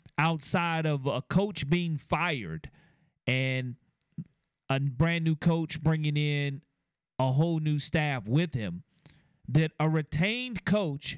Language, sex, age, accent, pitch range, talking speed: English, male, 40-59, American, 145-190 Hz, 125 wpm